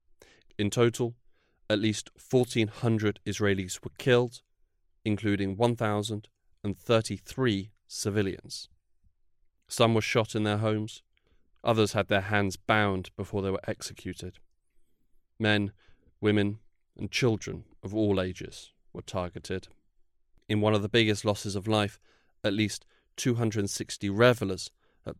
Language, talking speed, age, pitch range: English, 115 wpm, 30-49, 95-110 Hz